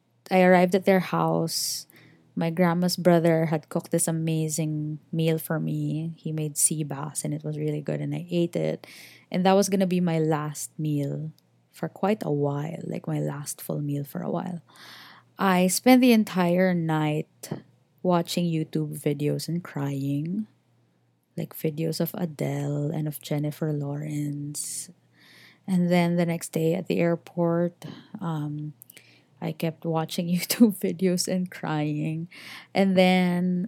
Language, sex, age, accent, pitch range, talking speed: English, female, 20-39, Filipino, 145-175 Hz, 150 wpm